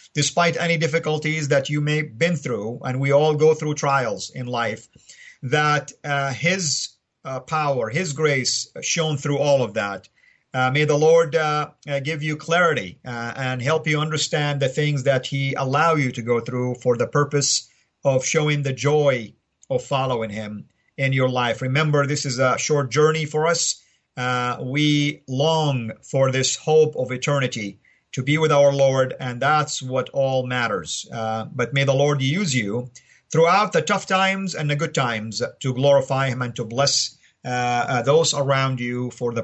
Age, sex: 50-69, male